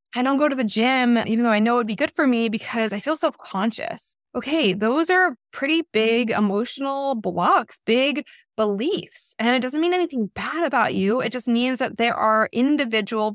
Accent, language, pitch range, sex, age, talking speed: American, English, 210-275 Hz, female, 20-39, 195 wpm